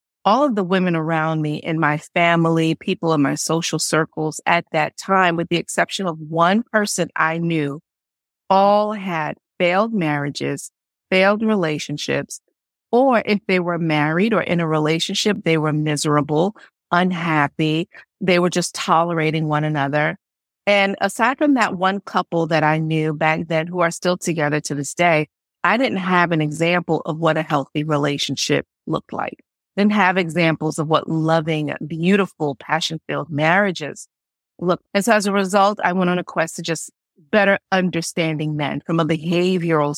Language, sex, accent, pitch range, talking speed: English, female, American, 155-185 Hz, 160 wpm